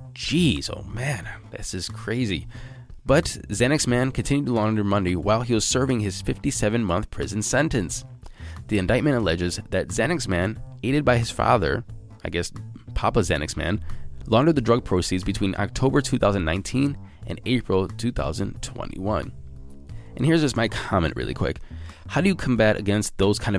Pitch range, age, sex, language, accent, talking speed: 95-120 Hz, 20-39, male, English, American, 155 wpm